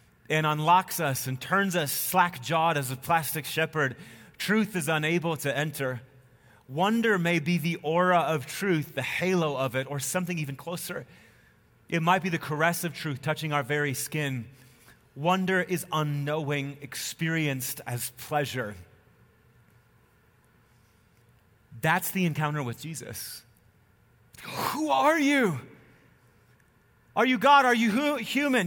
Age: 30-49